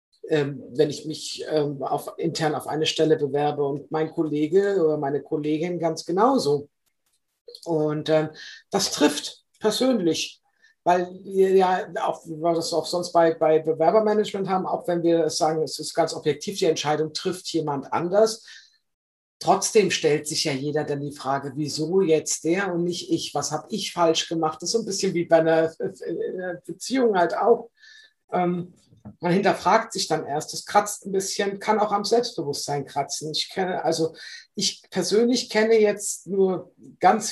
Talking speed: 165 wpm